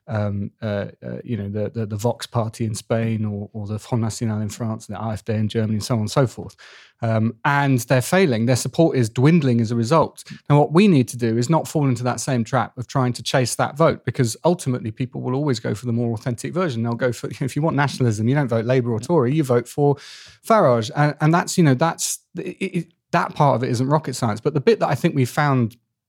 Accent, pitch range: British, 115-145 Hz